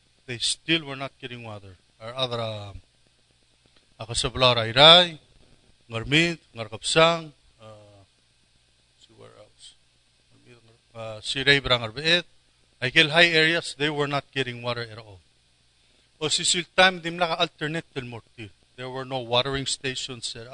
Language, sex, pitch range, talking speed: English, male, 110-150 Hz, 135 wpm